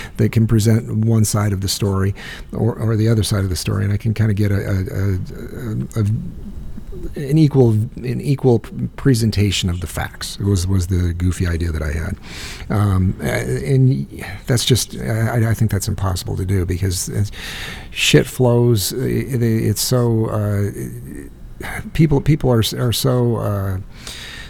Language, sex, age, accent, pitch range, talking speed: English, male, 50-69, American, 90-110 Hz, 160 wpm